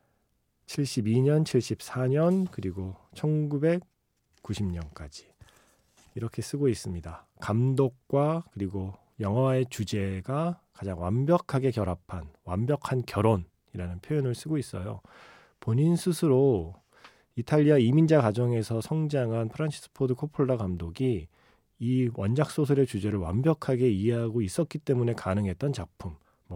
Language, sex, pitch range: Korean, male, 100-140 Hz